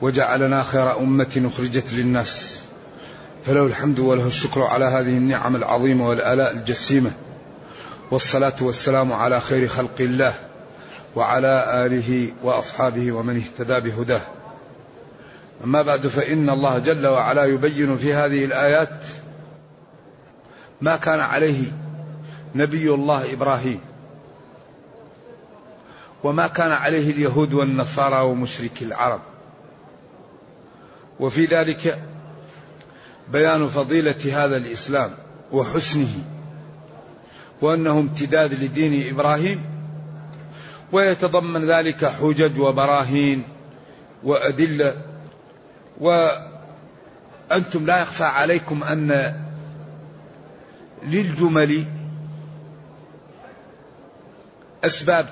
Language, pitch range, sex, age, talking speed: Arabic, 130-155 Hz, male, 40-59, 80 wpm